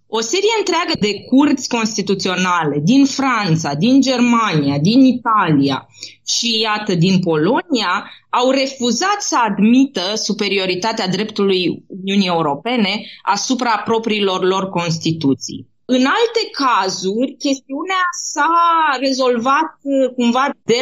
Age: 20-39